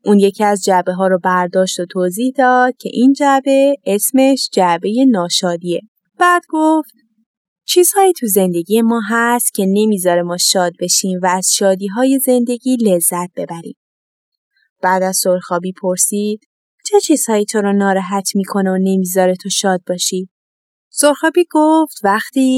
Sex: female